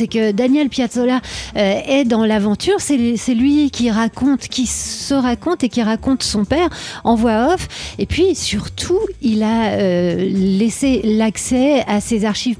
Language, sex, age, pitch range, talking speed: French, female, 40-59, 195-250 Hz, 150 wpm